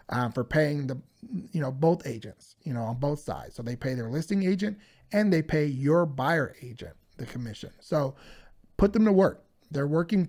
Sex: male